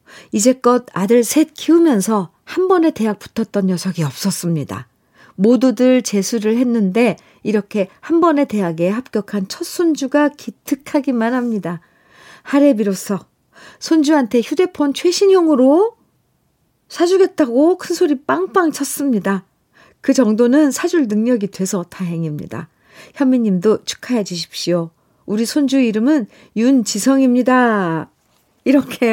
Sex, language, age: female, Korean, 50-69